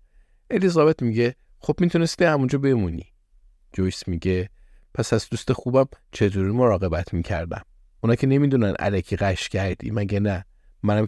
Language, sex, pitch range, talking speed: Persian, male, 95-120 Hz, 135 wpm